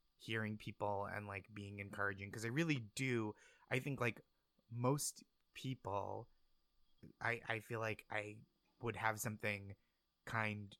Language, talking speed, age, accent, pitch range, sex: English, 135 wpm, 20-39, American, 100-120 Hz, male